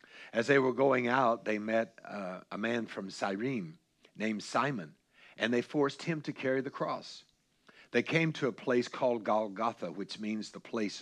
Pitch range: 115-140 Hz